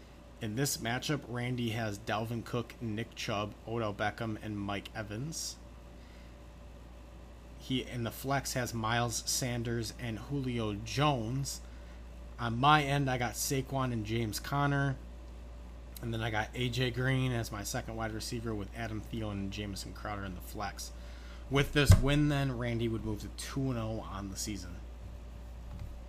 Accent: American